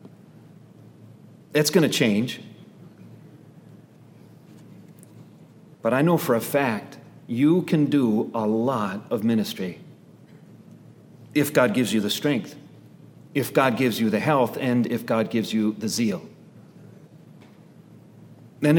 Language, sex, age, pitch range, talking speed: English, male, 40-59, 120-165 Hz, 120 wpm